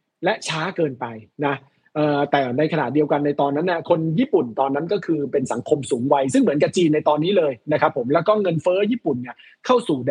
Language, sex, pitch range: Thai, male, 140-195 Hz